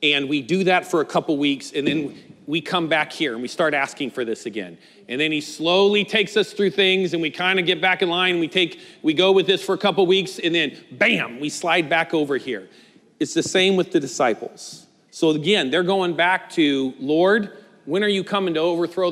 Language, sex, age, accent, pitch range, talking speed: English, male, 40-59, American, 155-195 Hz, 230 wpm